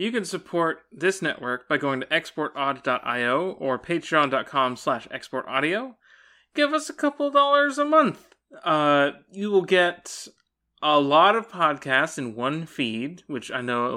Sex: male